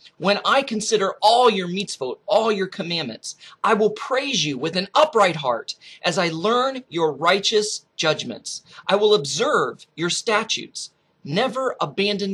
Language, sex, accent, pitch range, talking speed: English, male, American, 145-210 Hz, 145 wpm